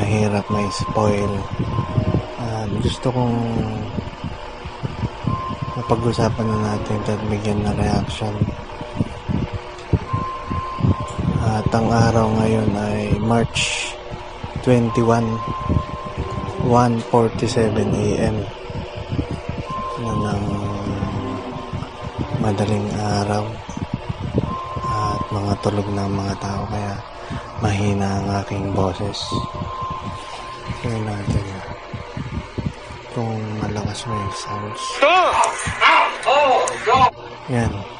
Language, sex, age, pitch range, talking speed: Filipino, male, 20-39, 100-115 Hz, 65 wpm